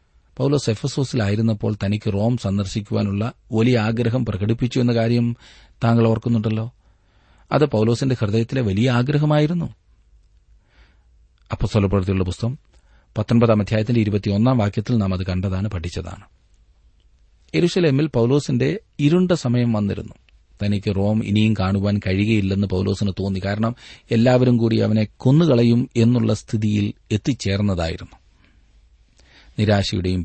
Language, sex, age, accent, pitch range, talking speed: Malayalam, male, 40-59, native, 90-115 Hz, 80 wpm